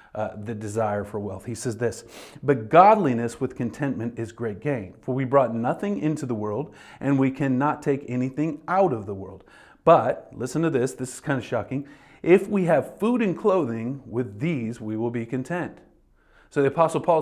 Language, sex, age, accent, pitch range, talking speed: English, male, 40-59, American, 110-150 Hz, 195 wpm